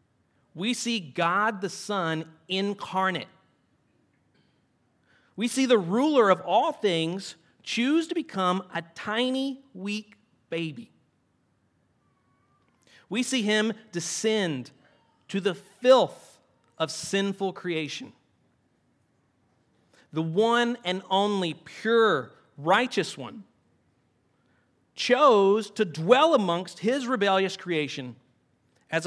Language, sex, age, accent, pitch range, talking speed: English, male, 40-59, American, 160-230 Hz, 95 wpm